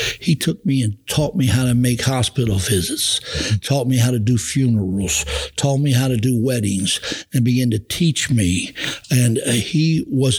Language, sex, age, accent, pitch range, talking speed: English, male, 60-79, American, 115-140 Hz, 180 wpm